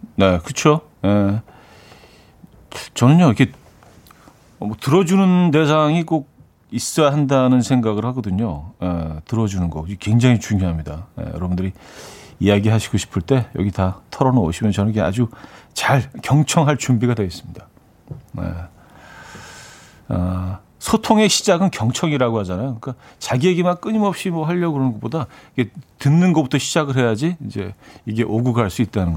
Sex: male